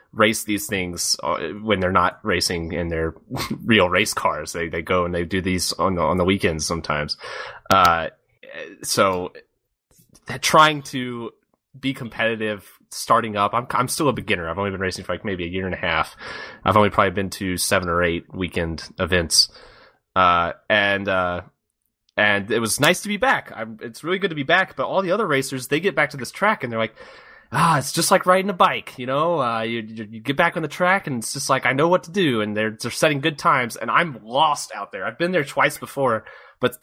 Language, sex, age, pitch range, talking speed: English, male, 20-39, 95-130 Hz, 220 wpm